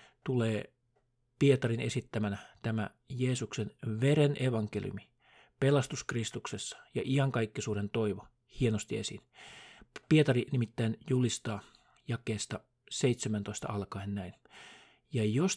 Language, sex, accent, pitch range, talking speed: Finnish, male, native, 110-140 Hz, 90 wpm